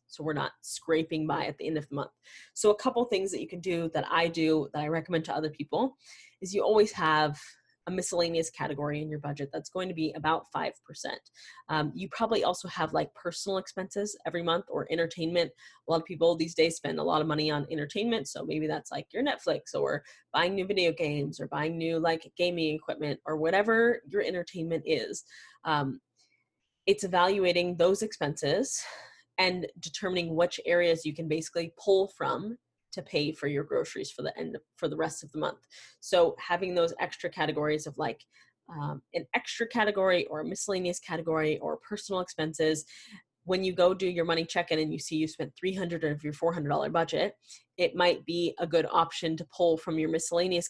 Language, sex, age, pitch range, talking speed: English, female, 20-39, 155-185 Hz, 200 wpm